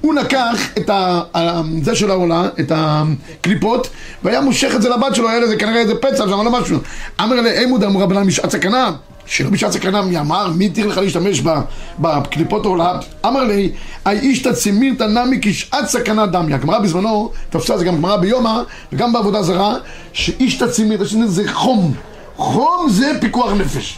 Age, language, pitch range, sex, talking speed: 30-49, Hebrew, 190-245 Hz, male, 175 wpm